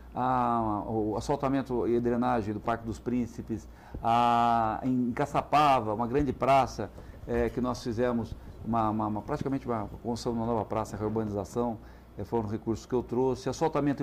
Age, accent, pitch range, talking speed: 60-79, Brazilian, 115-145 Hz, 165 wpm